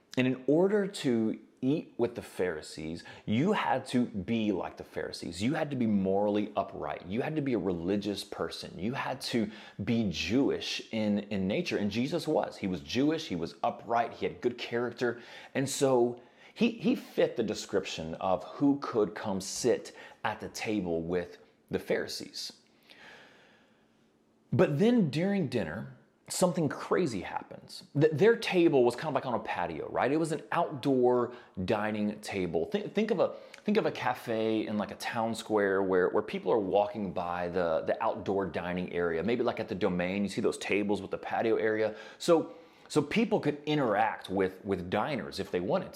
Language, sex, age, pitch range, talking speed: English, male, 30-49, 105-165 Hz, 180 wpm